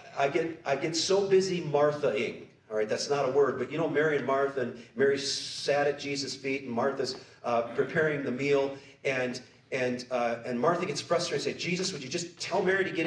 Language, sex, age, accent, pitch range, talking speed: English, male, 50-69, American, 135-170 Hz, 225 wpm